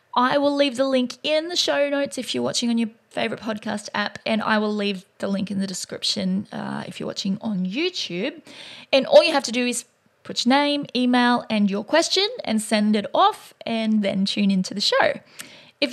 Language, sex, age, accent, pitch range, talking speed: English, female, 20-39, Australian, 205-265 Hz, 215 wpm